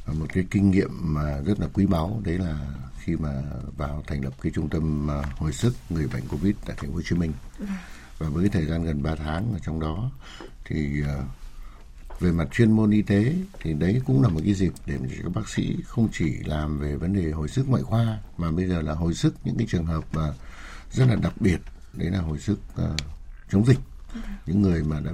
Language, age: Vietnamese, 60-79